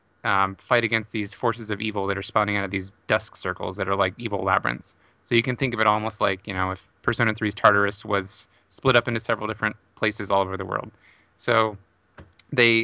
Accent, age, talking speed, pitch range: American, 20-39, 220 wpm, 100-125 Hz